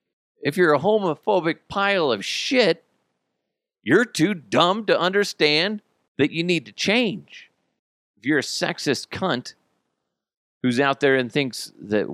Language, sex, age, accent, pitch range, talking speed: English, male, 50-69, American, 95-125 Hz, 140 wpm